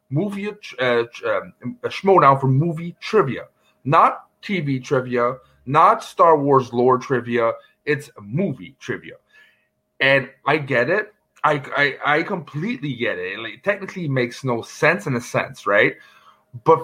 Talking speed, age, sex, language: 145 wpm, 30-49, male, English